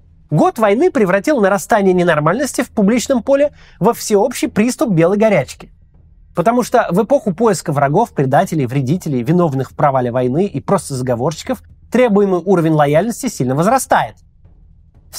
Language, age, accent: Russian, 20-39, native